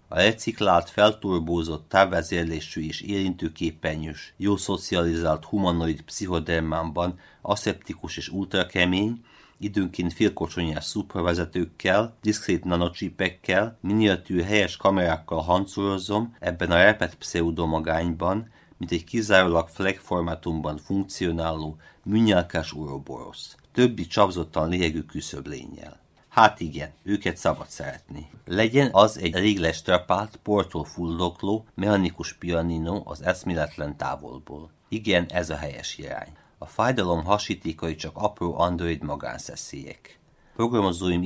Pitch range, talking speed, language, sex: 80-100 Hz, 100 wpm, Hungarian, male